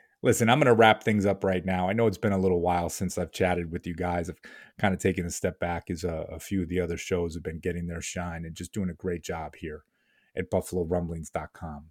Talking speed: 255 wpm